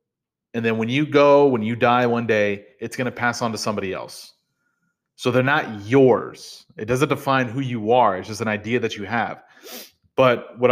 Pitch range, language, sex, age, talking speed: 110-150 Hz, English, male, 30-49, 205 wpm